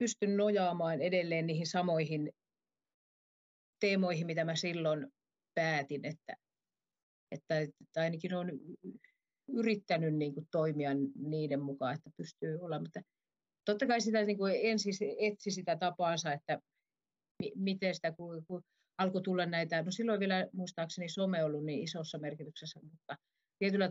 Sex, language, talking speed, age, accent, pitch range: female, Finnish, 130 wpm, 30-49, native, 155-180 Hz